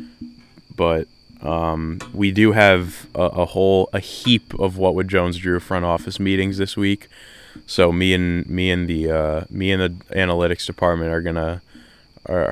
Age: 20-39